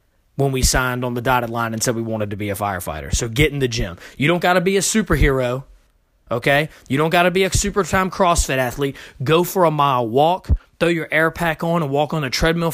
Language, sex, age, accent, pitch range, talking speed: English, male, 20-39, American, 120-160 Hz, 250 wpm